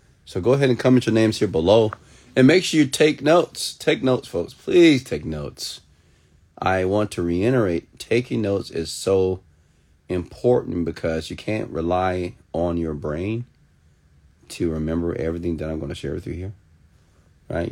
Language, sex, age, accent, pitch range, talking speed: English, male, 40-59, American, 75-105 Hz, 165 wpm